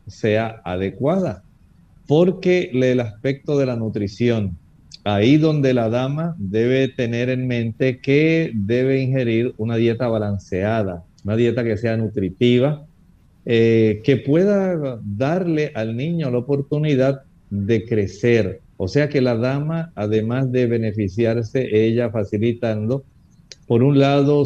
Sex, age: male, 50-69